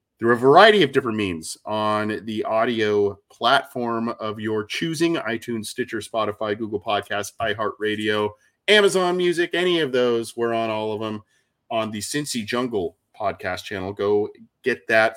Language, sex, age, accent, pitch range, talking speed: English, male, 30-49, American, 105-135 Hz, 140 wpm